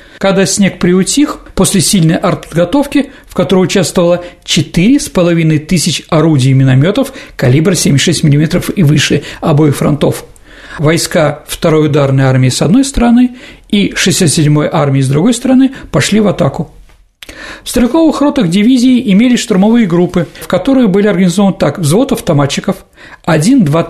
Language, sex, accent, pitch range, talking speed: Russian, male, native, 160-225 Hz, 130 wpm